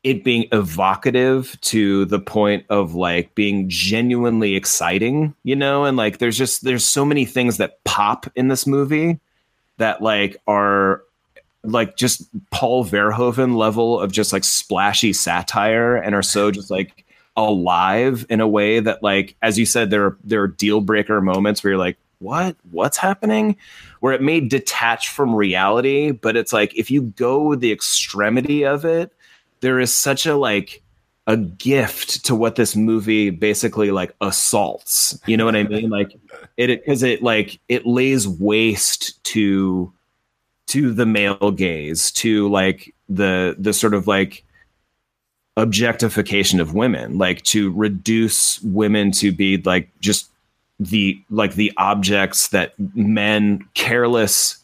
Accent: American